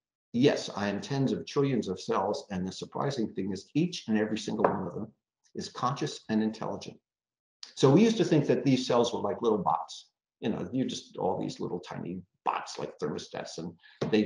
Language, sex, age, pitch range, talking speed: English, male, 50-69, 105-145 Hz, 205 wpm